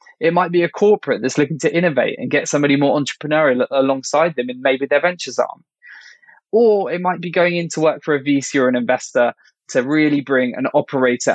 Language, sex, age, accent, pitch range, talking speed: English, male, 20-39, British, 125-170 Hz, 210 wpm